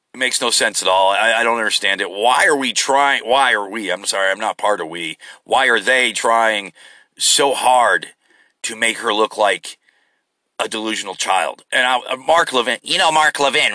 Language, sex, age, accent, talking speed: English, male, 40-59, American, 200 wpm